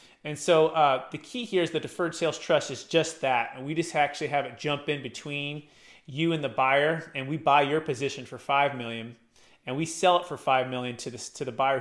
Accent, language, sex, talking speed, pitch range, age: American, English, male, 240 wpm, 135-165 Hz, 30-49